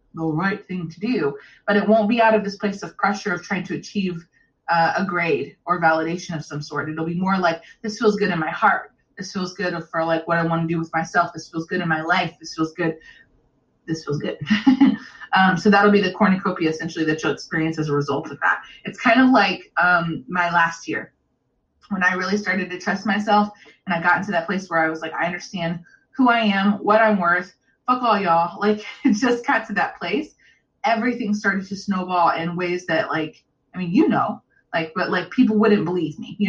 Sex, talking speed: female, 230 wpm